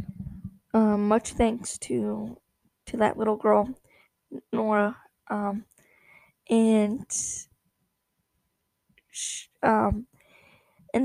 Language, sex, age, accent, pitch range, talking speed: English, female, 10-29, American, 215-240 Hz, 75 wpm